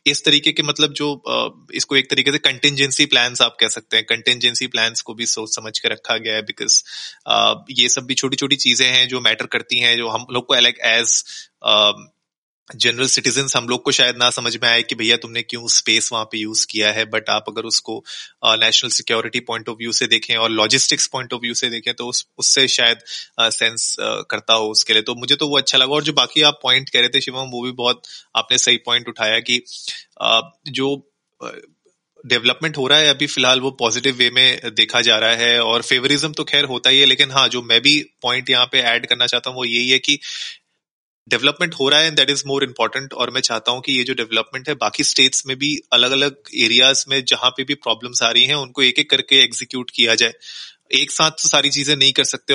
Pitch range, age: 115-135 Hz, 20-39